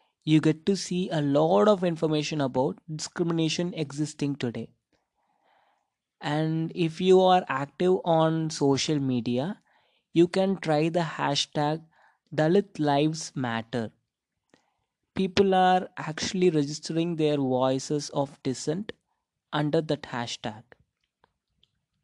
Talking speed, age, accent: 105 wpm, 20-39, native